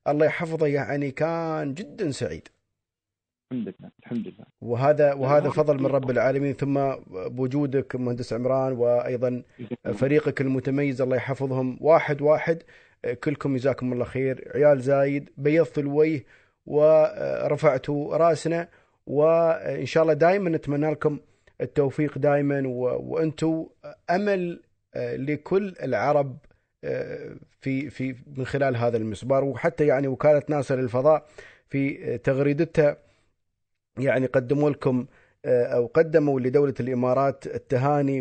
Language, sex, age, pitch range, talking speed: Arabic, male, 30-49, 130-150 Hz, 105 wpm